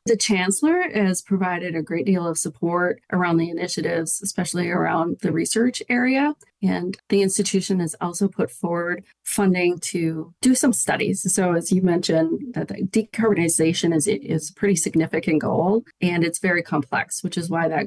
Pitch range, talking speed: 160-195 Hz, 170 wpm